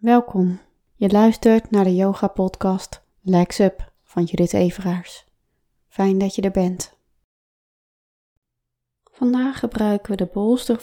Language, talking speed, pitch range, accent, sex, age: English, 120 wpm, 195-265 Hz, Dutch, female, 20-39